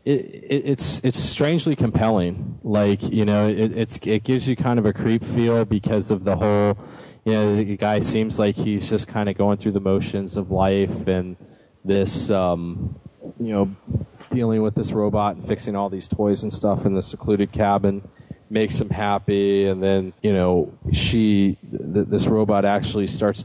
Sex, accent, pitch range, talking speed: male, American, 85-105 Hz, 185 wpm